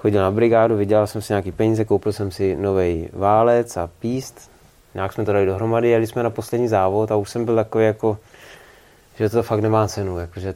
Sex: male